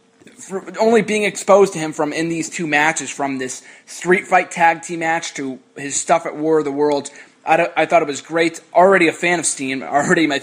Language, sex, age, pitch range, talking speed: English, male, 20-39, 140-175 Hz, 230 wpm